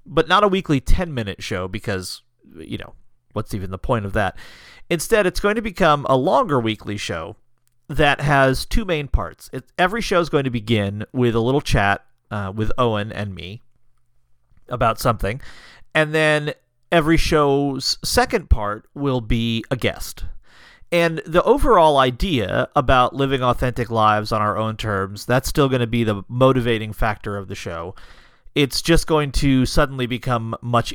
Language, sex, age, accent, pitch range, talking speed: English, male, 40-59, American, 105-140 Hz, 165 wpm